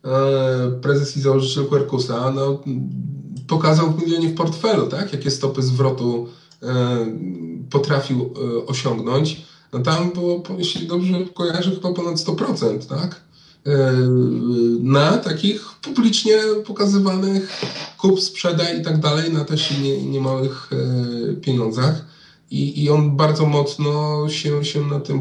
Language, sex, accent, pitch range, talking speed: Polish, male, native, 135-165 Hz, 125 wpm